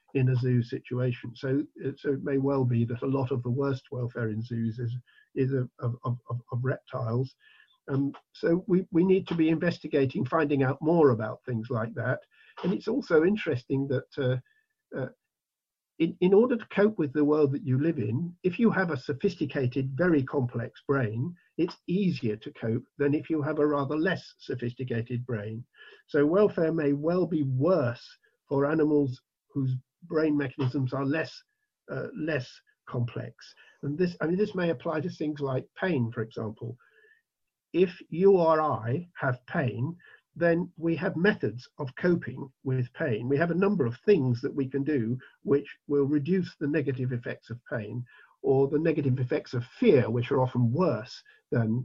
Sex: male